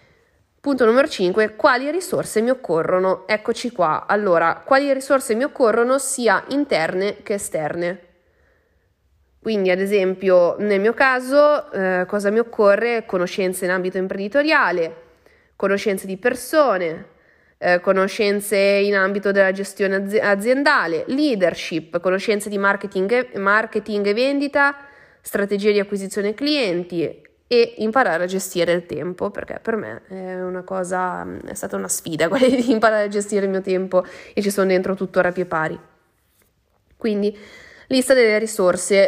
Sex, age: female, 20-39